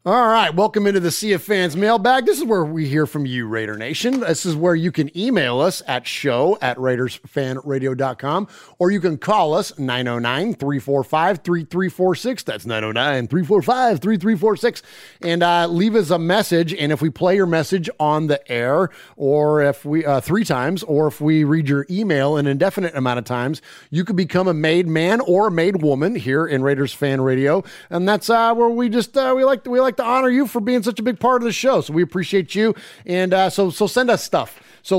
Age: 30-49